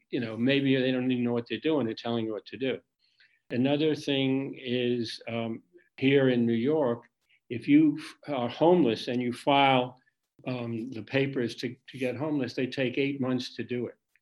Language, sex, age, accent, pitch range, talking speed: English, male, 50-69, American, 120-135 Hz, 190 wpm